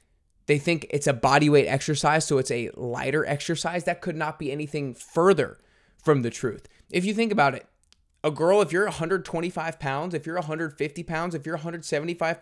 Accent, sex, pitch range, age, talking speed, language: American, male, 125-165 Hz, 20-39, 190 wpm, English